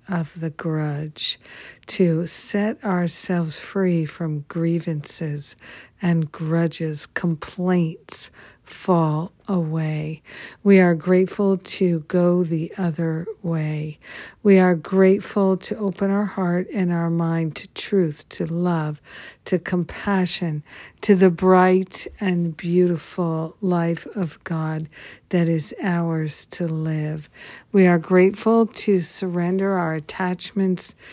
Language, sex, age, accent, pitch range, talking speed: English, female, 60-79, American, 165-185 Hz, 110 wpm